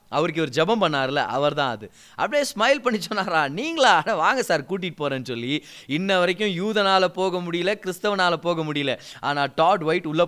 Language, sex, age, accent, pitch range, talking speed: Tamil, male, 20-39, native, 145-225 Hz, 170 wpm